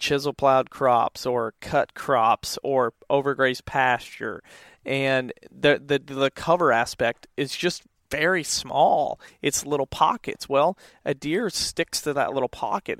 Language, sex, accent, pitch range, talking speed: English, male, American, 125-160 Hz, 140 wpm